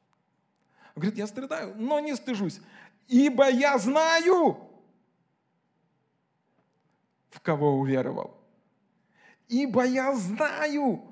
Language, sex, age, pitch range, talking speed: Russian, male, 40-59, 155-235 Hz, 80 wpm